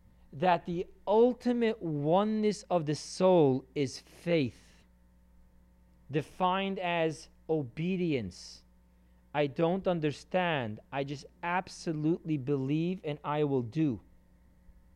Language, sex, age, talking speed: English, male, 40-59, 90 wpm